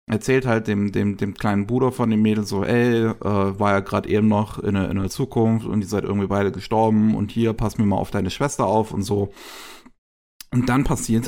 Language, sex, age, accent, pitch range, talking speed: German, male, 30-49, German, 100-130 Hz, 225 wpm